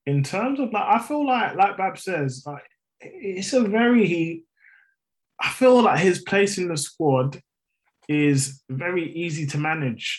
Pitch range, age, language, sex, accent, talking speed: 135-195 Hz, 20-39, English, male, British, 165 wpm